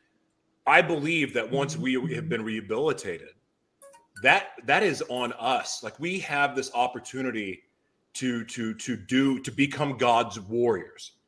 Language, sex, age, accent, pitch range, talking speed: English, male, 30-49, American, 125-165 Hz, 140 wpm